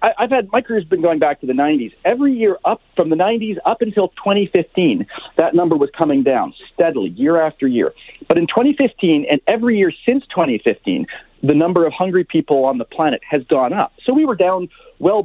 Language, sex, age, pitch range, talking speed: English, male, 40-59, 145-235 Hz, 205 wpm